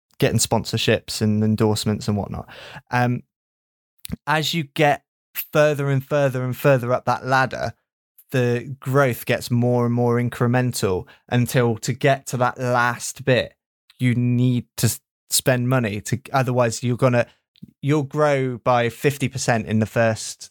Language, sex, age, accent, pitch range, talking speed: English, male, 20-39, British, 115-140 Hz, 145 wpm